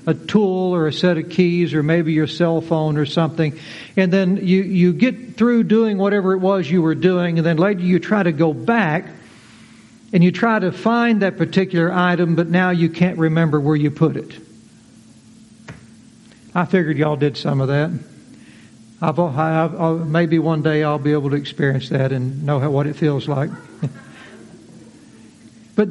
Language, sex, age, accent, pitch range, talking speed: English, male, 60-79, American, 145-190 Hz, 175 wpm